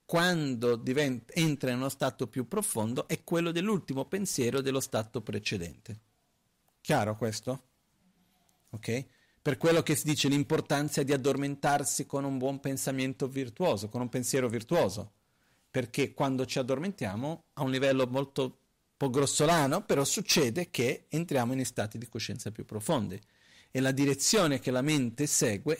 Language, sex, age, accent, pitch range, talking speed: Italian, male, 40-59, native, 115-155 Hz, 145 wpm